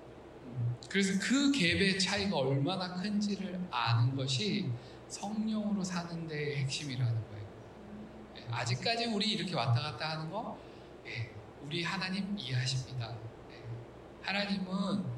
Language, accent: Korean, native